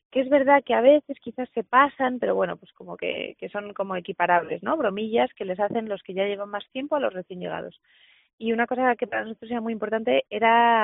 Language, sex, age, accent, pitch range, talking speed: Spanish, female, 20-39, Spanish, 185-225 Hz, 240 wpm